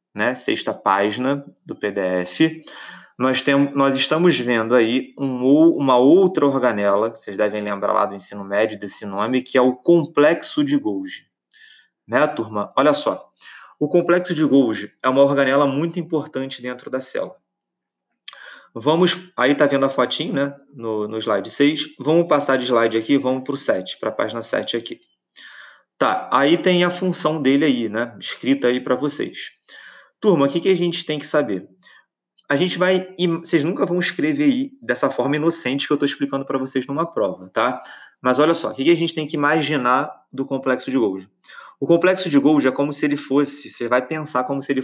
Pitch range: 130-170 Hz